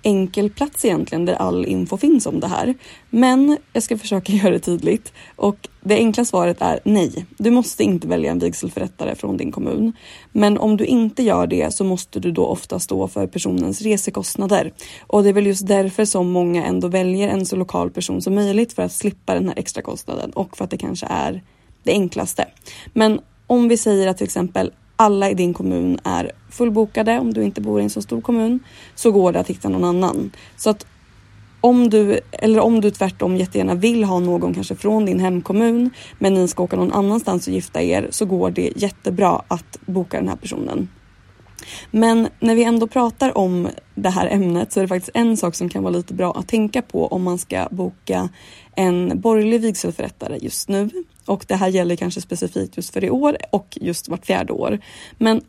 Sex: female